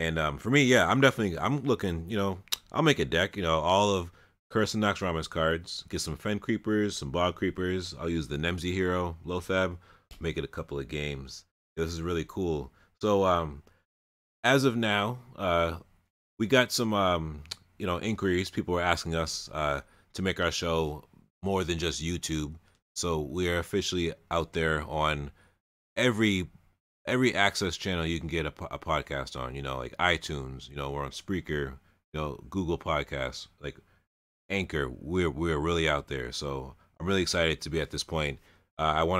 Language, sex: English, male